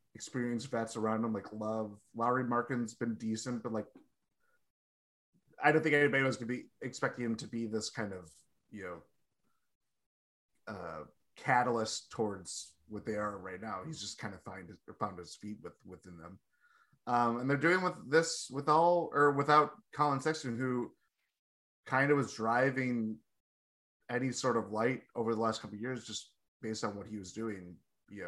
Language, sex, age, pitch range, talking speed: English, male, 20-39, 105-130 Hz, 180 wpm